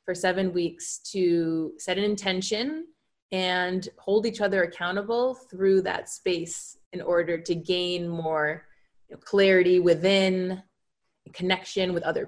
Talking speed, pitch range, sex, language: 120 wpm, 170-205 Hz, female, English